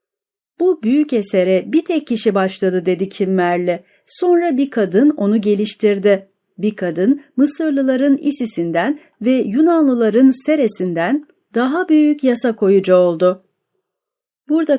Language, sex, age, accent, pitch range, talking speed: Turkish, female, 40-59, native, 190-280 Hz, 110 wpm